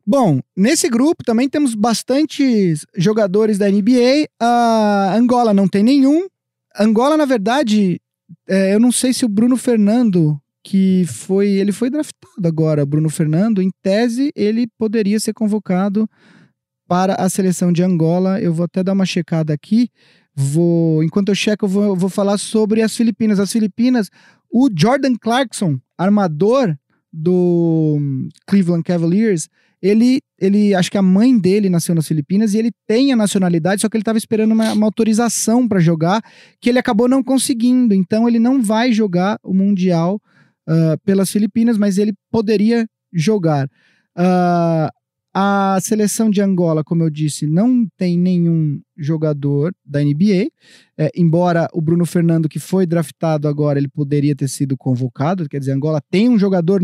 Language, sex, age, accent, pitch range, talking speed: Portuguese, male, 20-39, Brazilian, 170-225 Hz, 160 wpm